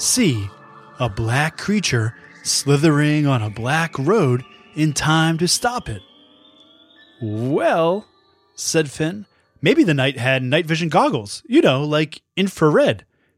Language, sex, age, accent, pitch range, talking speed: English, male, 20-39, American, 125-170 Hz, 125 wpm